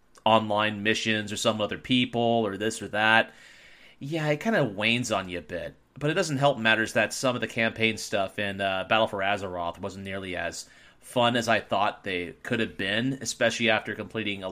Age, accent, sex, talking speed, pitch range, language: 30-49, American, male, 205 wpm, 100-130 Hz, English